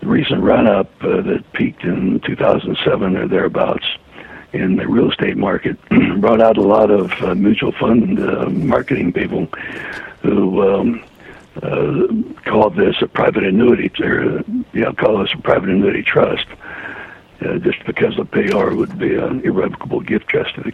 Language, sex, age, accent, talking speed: English, male, 60-79, American, 160 wpm